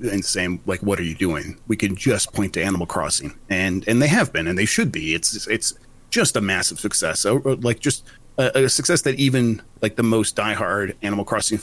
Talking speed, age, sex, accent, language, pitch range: 220 wpm, 30-49, male, American, English, 100-125 Hz